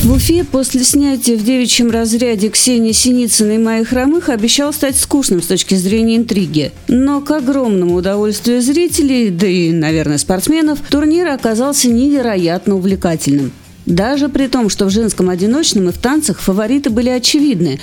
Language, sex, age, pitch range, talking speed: Russian, female, 40-59, 190-260 Hz, 150 wpm